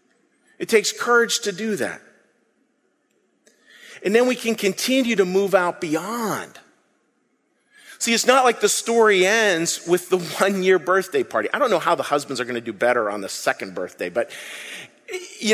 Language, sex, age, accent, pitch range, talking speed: English, male, 40-59, American, 150-220 Hz, 170 wpm